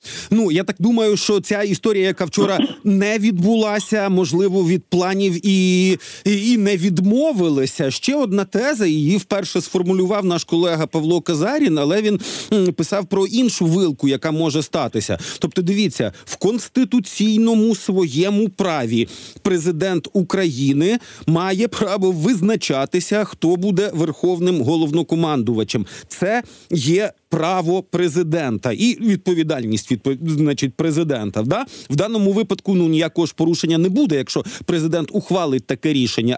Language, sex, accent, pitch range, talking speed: Ukrainian, male, native, 160-205 Hz, 125 wpm